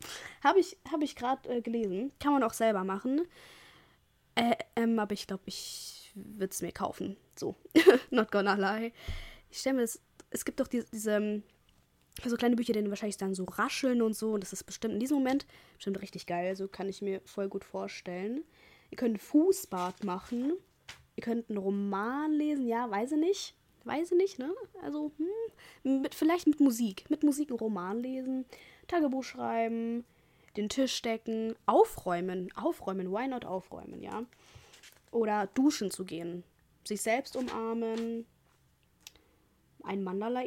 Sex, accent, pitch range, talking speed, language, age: female, German, 200-265 Hz, 165 wpm, German, 20-39